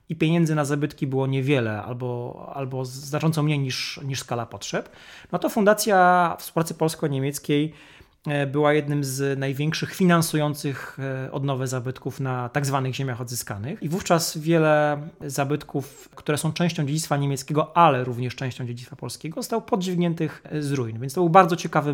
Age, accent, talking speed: 30-49, native, 150 wpm